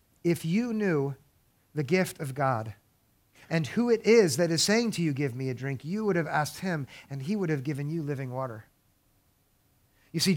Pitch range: 140-190 Hz